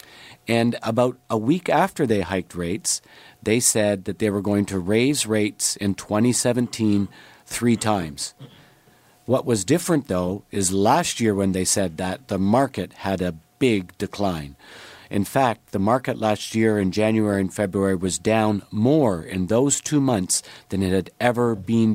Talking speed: 165 wpm